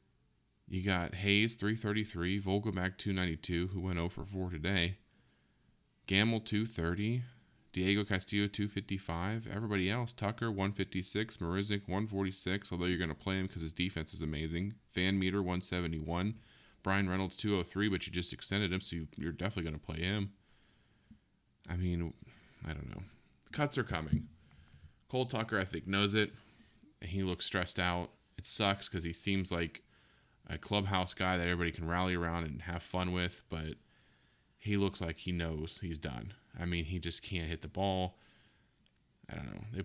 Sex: male